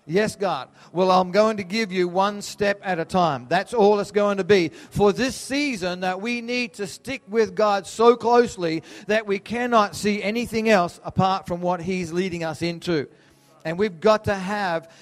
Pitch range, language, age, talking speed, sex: 175-225 Hz, English, 40-59, 195 wpm, male